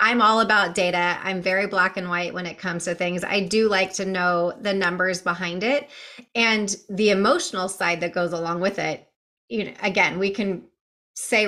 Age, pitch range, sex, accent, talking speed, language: 30-49, 180-220 Hz, female, American, 200 wpm, English